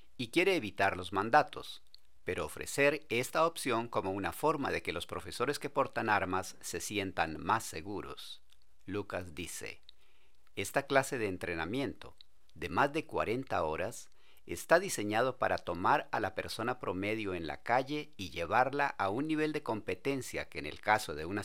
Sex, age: male, 50-69